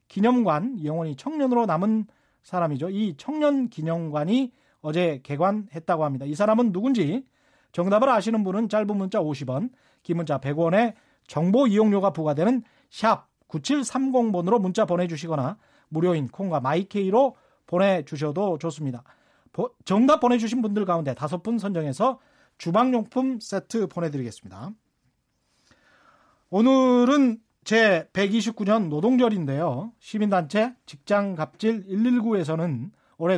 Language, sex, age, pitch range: Korean, male, 40-59, 170-240 Hz